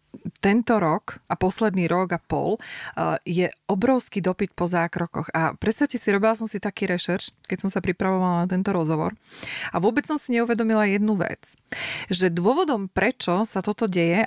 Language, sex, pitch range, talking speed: Slovak, female, 175-225 Hz, 170 wpm